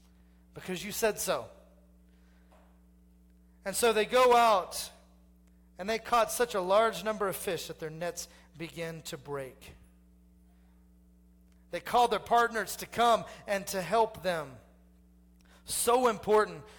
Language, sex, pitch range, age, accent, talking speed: English, male, 195-250 Hz, 40-59, American, 130 wpm